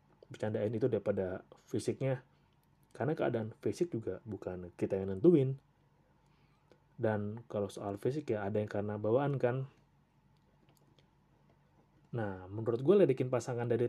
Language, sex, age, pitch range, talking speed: Indonesian, male, 30-49, 110-150 Hz, 120 wpm